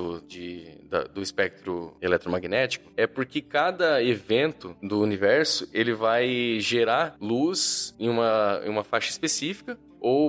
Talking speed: 130 wpm